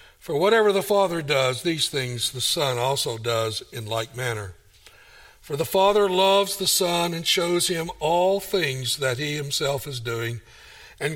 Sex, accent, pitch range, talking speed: male, American, 120-185 Hz, 165 wpm